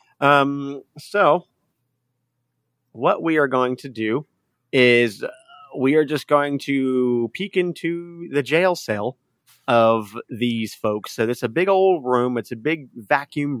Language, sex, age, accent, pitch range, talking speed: English, male, 30-49, American, 115-145 Hz, 140 wpm